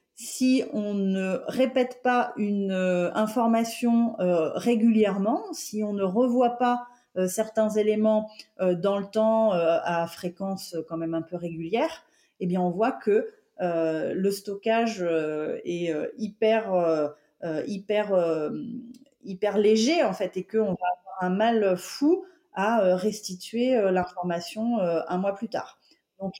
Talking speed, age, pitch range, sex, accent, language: 125 wpm, 30-49, 185-245 Hz, female, French, French